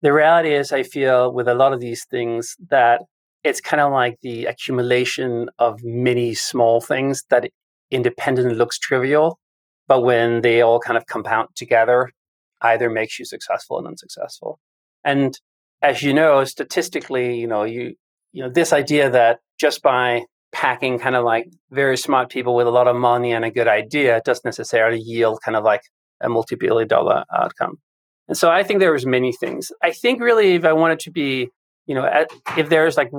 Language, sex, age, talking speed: English, male, 30-49, 185 wpm